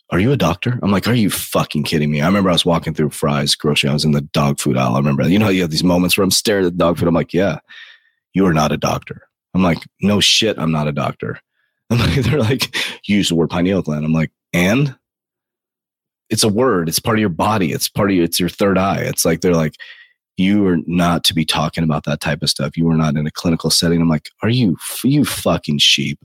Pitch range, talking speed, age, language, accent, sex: 80-100 Hz, 260 wpm, 30-49, English, American, male